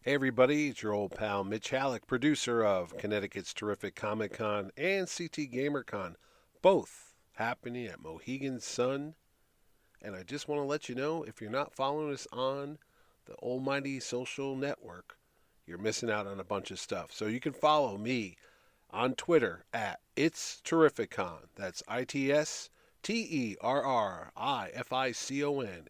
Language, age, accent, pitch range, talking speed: English, 40-59, American, 110-150 Hz, 145 wpm